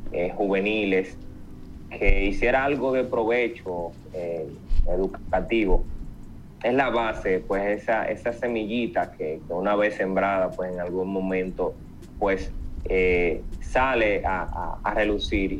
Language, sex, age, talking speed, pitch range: Spanish, male, 30-49, 120 wpm, 95-110 Hz